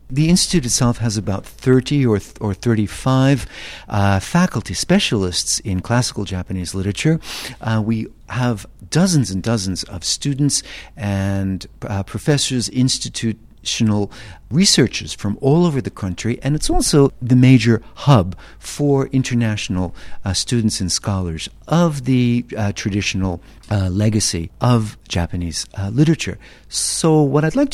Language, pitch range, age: Japanese, 100-130 Hz, 50-69